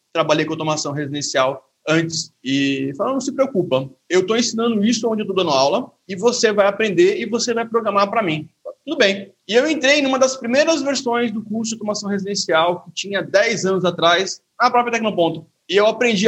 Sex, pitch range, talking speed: male, 170-235 Hz, 200 wpm